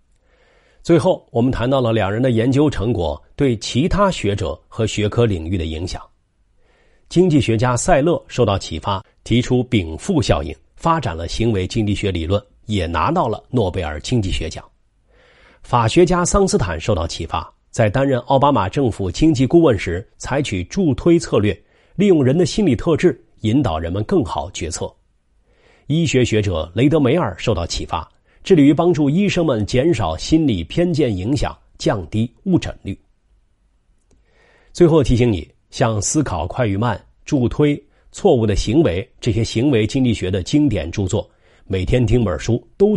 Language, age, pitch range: Chinese, 40-59, 95-135 Hz